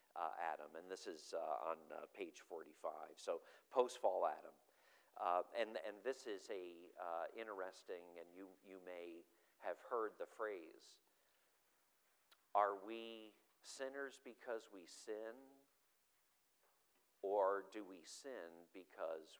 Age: 50-69